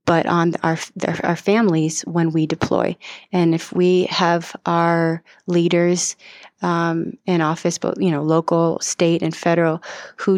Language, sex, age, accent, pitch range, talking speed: English, female, 30-49, American, 170-185 Hz, 145 wpm